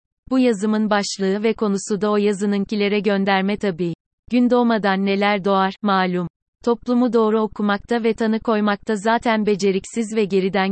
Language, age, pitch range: Turkish, 30-49, 195-225 Hz